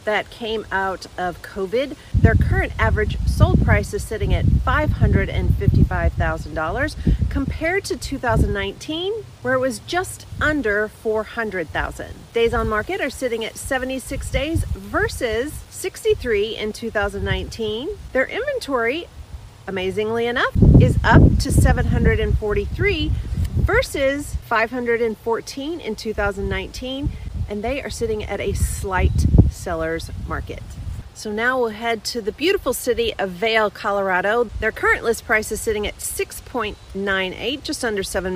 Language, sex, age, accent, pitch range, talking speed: English, female, 40-59, American, 205-270 Hz, 120 wpm